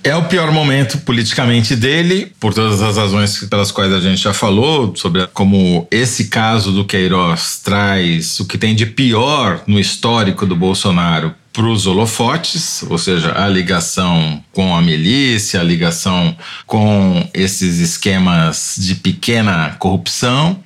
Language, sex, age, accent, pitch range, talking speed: Portuguese, male, 40-59, Brazilian, 95-140 Hz, 145 wpm